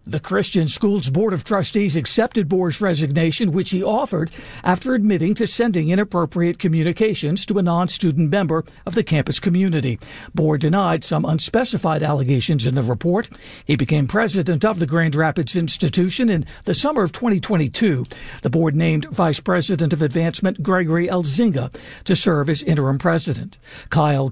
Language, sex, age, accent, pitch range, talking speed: English, male, 60-79, American, 140-175 Hz, 155 wpm